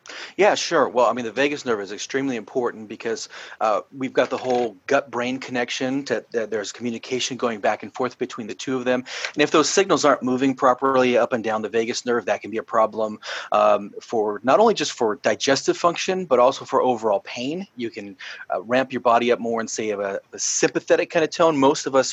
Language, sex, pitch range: English, male, 120-150 Hz